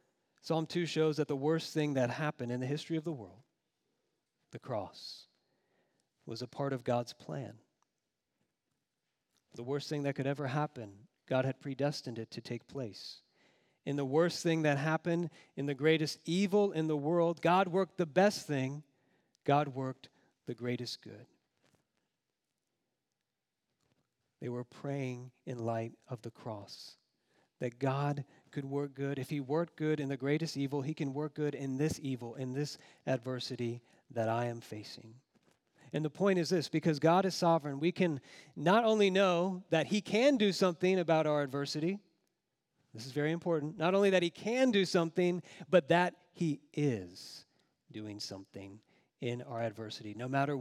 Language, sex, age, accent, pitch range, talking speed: English, male, 40-59, American, 125-165 Hz, 165 wpm